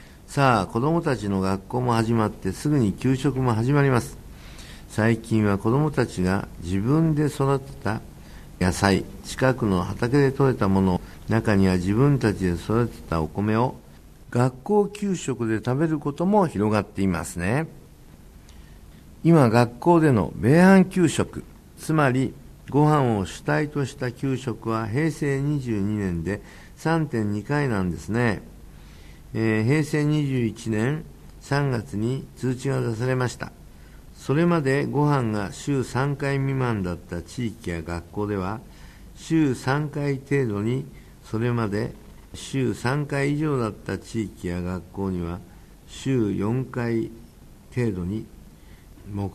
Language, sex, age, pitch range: Japanese, male, 60-79, 95-135 Hz